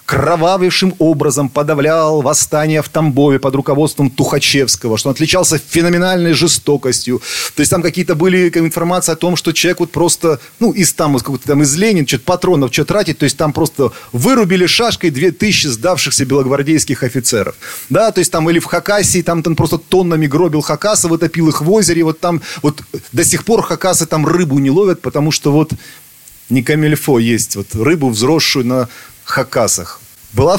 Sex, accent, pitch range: male, native, 145-180 Hz